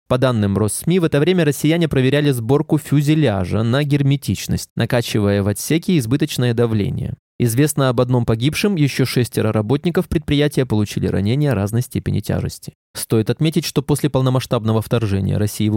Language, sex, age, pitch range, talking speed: Russian, male, 20-39, 110-150 Hz, 145 wpm